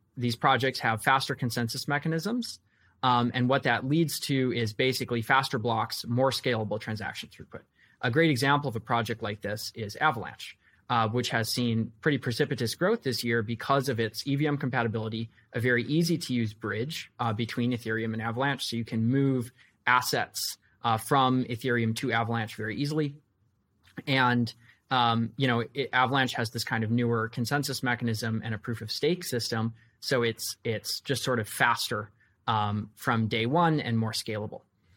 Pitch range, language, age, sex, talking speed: 115-135 Hz, English, 20-39, male, 170 wpm